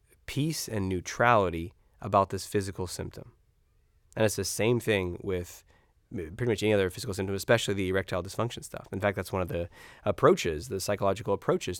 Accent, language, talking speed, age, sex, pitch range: American, English, 175 wpm, 20-39, male, 90-125 Hz